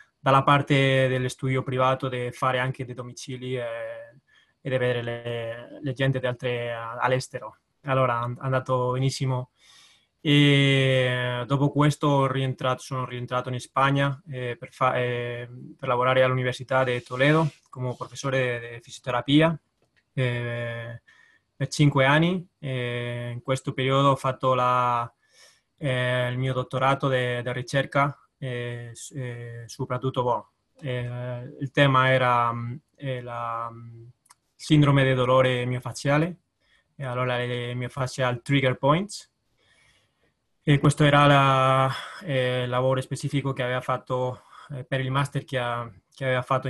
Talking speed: 130 wpm